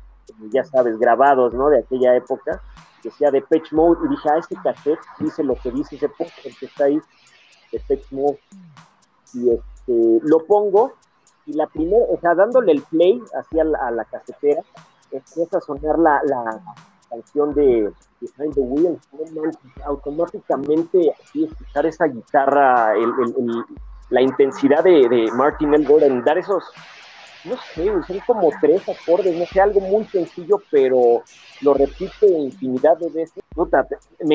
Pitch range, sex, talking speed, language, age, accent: 135-185 Hz, male, 160 wpm, Spanish, 40-59, Mexican